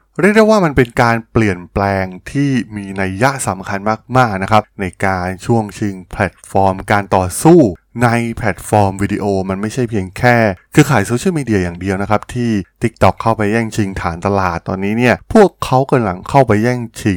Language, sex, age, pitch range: Thai, male, 20-39, 100-125 Hz